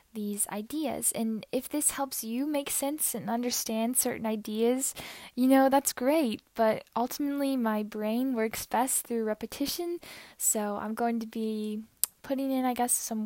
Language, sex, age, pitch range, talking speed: English, female, 10-29, 205-245 Hz, 160 wpm